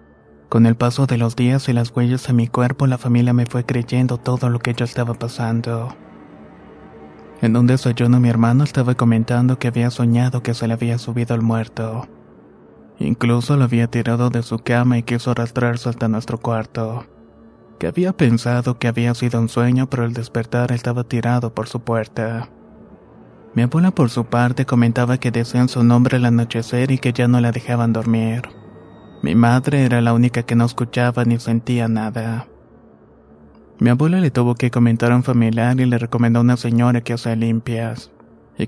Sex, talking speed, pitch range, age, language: male, 185 wpm, 115-125 Hz, 20-39, Spanish